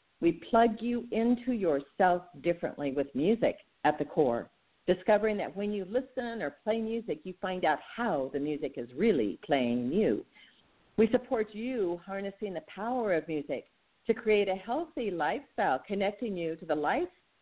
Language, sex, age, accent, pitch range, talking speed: English, female, 50-69, American, 165-225 Hz, 160 wpm